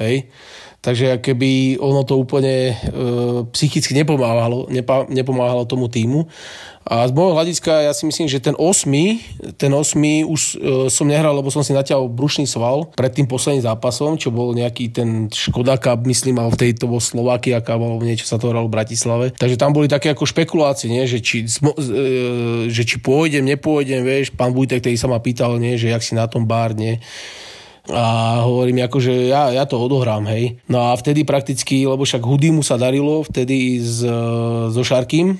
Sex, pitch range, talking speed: male, 120-140 Hz, 180 wpm